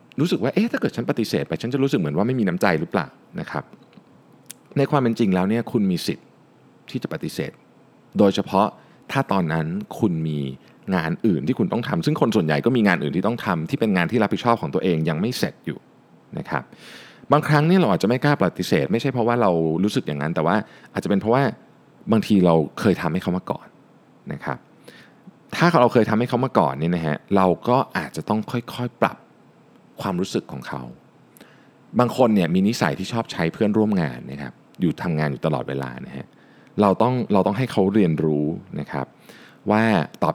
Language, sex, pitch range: Thai, male, 85-135 Hz